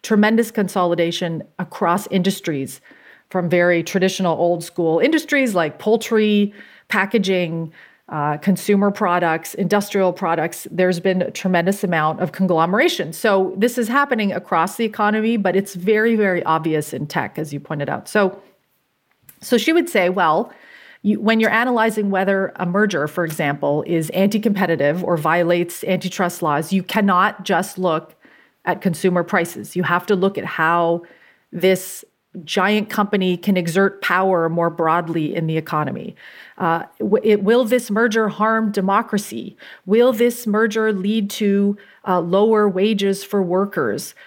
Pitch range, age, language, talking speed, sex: 175-210 Hz, 40-59, English, 140 wpm, female